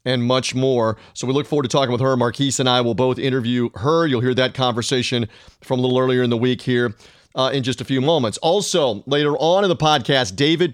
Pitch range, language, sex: 125-155 Hz, English, male